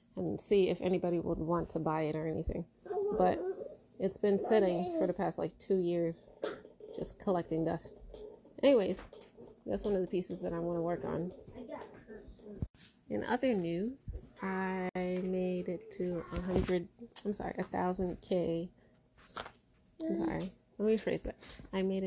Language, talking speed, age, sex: English, 150 wpm, 30-49, female